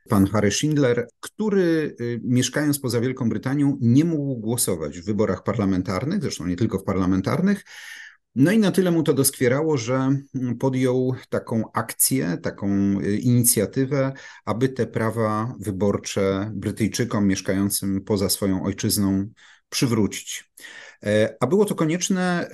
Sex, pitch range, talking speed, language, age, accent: male, 105-130 Hz, 120 wpm, Polish, 40-59, native